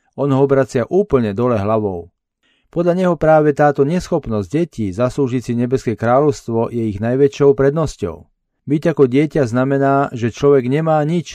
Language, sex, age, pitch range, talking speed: Slovak, male, 40-59, 110-145 Hz, 150 wpm